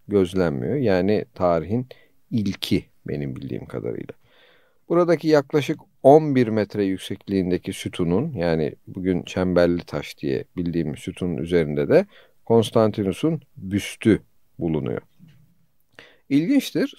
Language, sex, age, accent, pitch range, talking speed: Turkish, male, 50-69, native, 90-130 Hz, 90 wpm